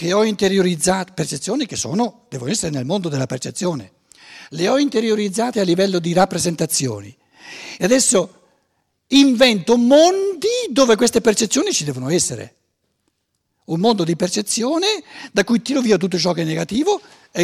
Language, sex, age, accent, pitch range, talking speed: Italian, male, 60-79, native, 140-215 Hz, 150 wpm